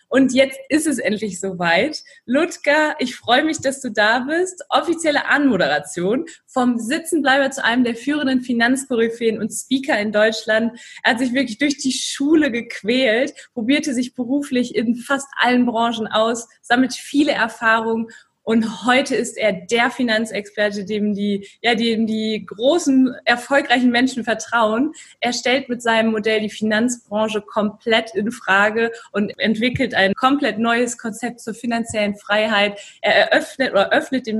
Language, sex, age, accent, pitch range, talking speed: German, female, 20-39, German, 215-260 Hz, 150 wpm